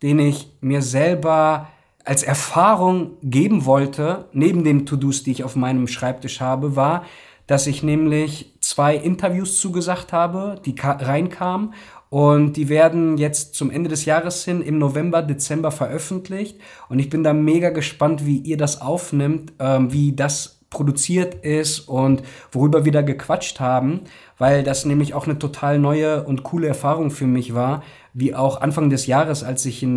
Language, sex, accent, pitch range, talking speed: German, male, German, 135-155 Hz, 165 wpm